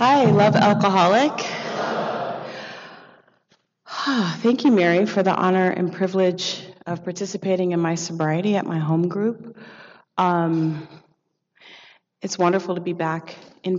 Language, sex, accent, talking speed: English, female, American, 120 wpm